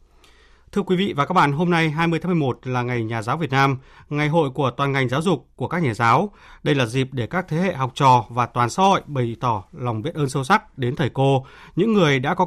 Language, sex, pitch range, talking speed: Vietnamese, male, 125-165 Hz, 265 wpm